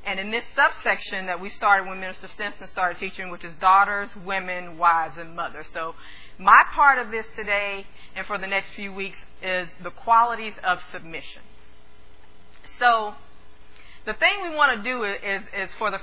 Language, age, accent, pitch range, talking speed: English, 40-59, American, 180-245 Hz, 175 wpm